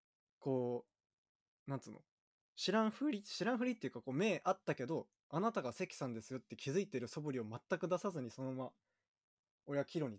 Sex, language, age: male, Japanese, 20-39